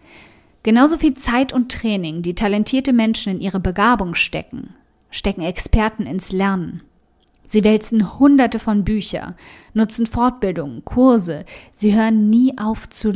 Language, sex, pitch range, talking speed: German, female, 195-245 Hz, 130 wpm